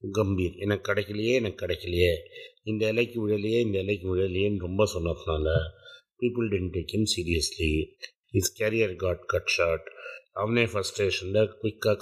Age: 50-69